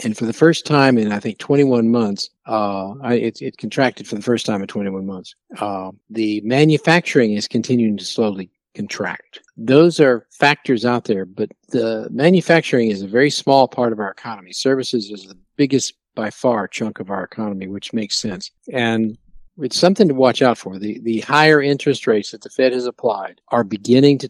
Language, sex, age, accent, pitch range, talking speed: English, male, 50-69, American, 105-135 Hz, 195 wpm